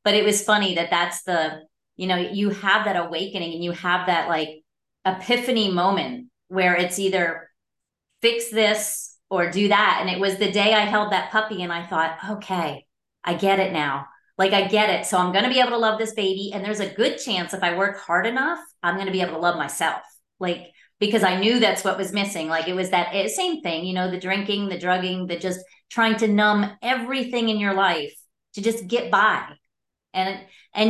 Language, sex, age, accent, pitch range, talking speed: English, female, 30-49, American, 180-220 Hz, 220 wpm